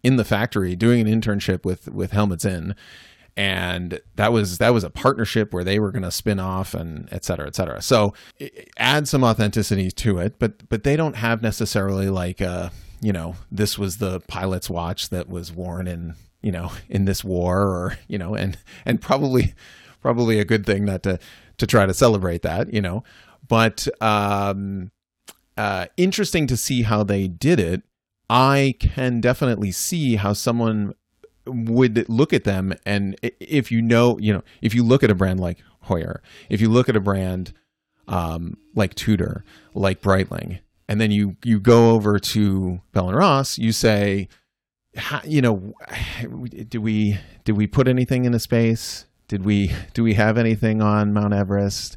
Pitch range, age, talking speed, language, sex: 95-115 Hz, 30-49, 180 wpm, English, male